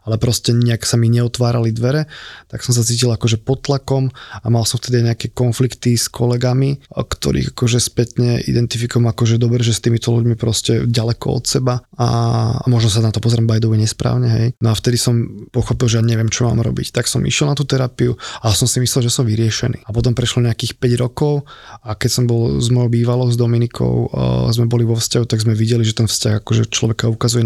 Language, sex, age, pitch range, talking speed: Slovak, male, 20-39, 115-125 Hz, 220 wpm